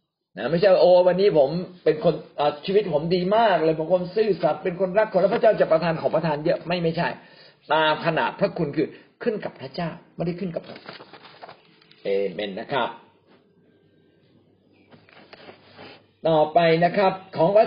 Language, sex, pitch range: Thai, male, 150-200 Hz